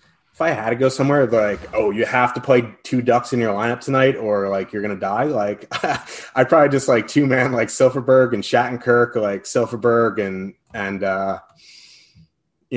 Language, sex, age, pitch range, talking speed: English, male, 20-39, 105-140 Hz, 185 wpm